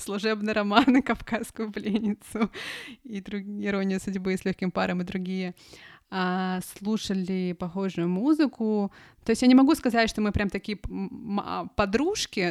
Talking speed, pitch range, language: 135 wpm, 185-225 Hz, Russian